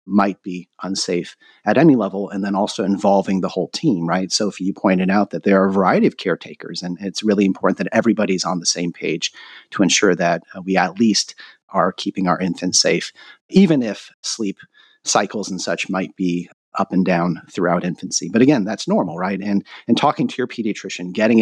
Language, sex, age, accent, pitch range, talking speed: English, male, 40-59, American, 95-120 Hz, 200 wpm